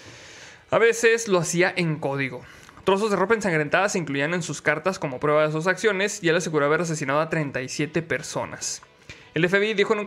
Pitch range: 155-205 Hz